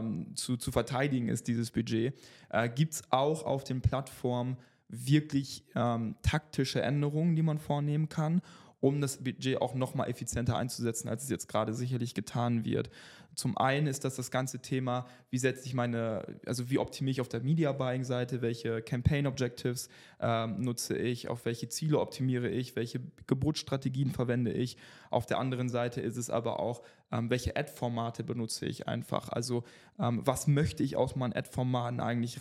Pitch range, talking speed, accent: 120-135 Hz, 165 wpm, German